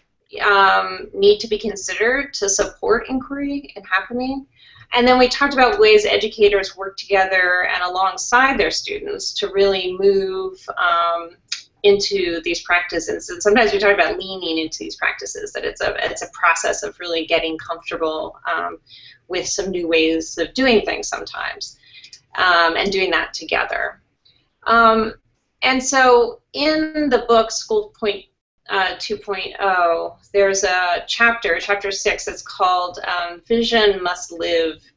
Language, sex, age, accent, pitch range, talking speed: English, female, 30-49, American, 185-265 Hz, 145 wpm